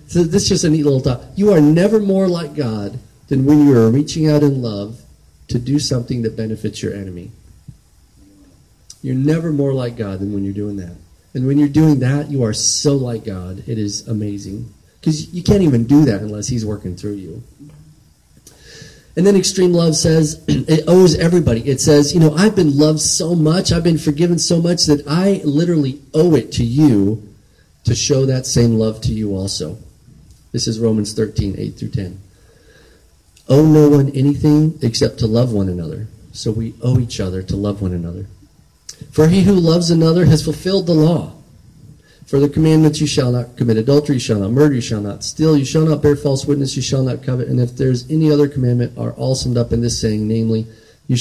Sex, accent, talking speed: male, American, 205 wpm